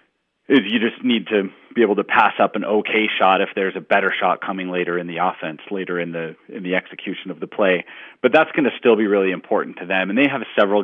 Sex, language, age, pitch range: male, English, 30-49, 90-100 Hz